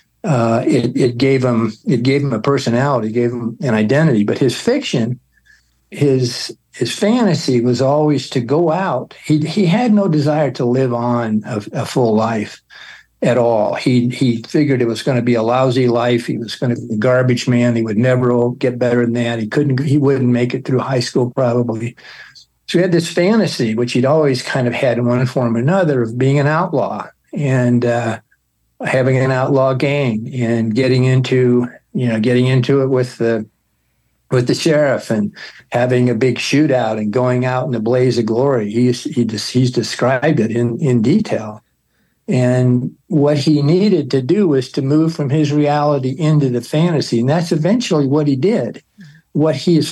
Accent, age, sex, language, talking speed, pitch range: American, 60-79, male, English, 190 wpm, 120-145 Hz